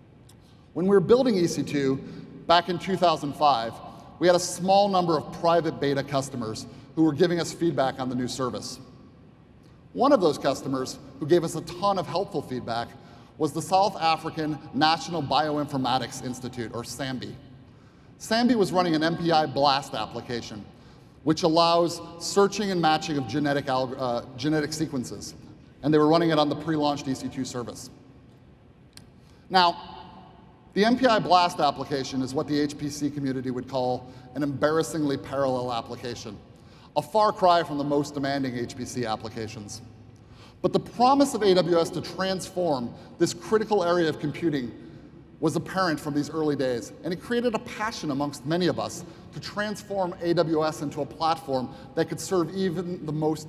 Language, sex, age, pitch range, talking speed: English, male, 30-49, 130-175 Hz, 155 wpm